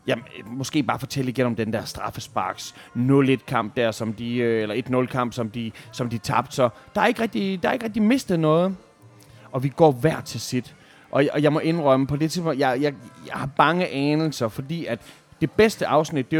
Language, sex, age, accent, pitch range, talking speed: Danish, male, 30-49, native, 115-150 Hz, 210 wpm